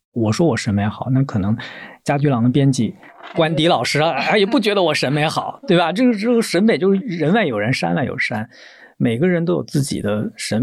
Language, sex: Chinese, male